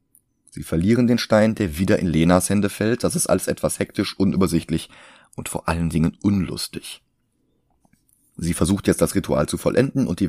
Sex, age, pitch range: male, 30-49, 85-110 Hz